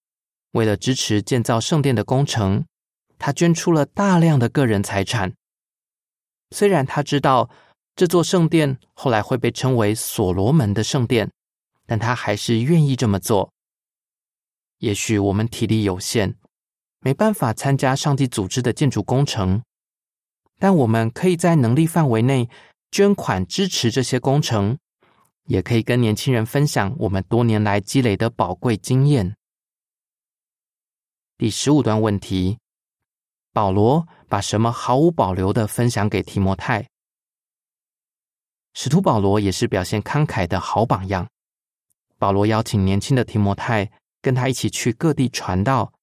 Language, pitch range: Chinese, 105-140 Hz